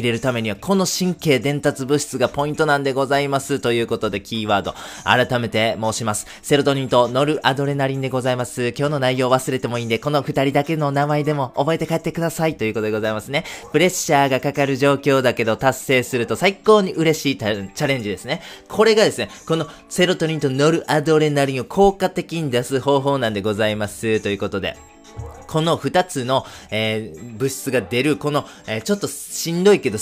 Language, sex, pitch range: Japanese, male, 115-160 Hz